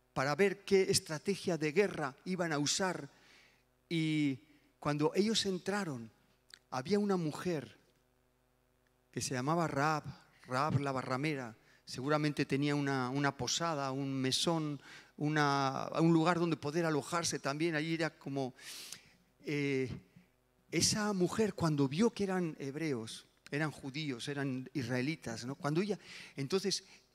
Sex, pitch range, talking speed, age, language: male, 135-185 Hz, 115 wpm, 40-59, Spanish